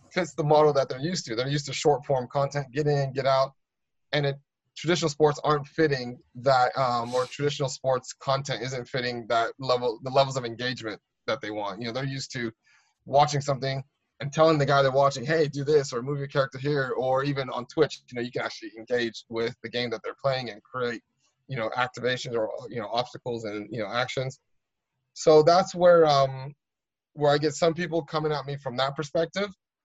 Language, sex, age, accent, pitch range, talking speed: English, male, 20-39, American, 120-145 Hz, 210 wpm